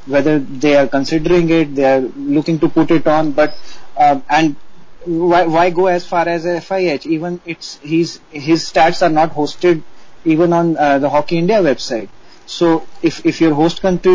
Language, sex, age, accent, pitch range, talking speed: English, male, 30-49, Indian, 150-180 Hz, 180 wpm